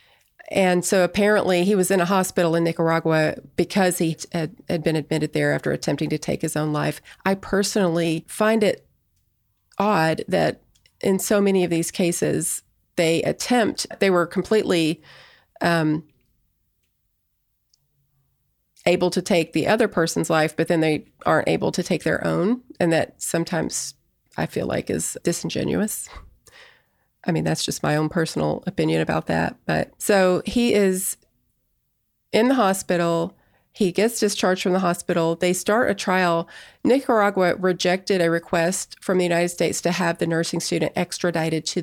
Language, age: English, 30-49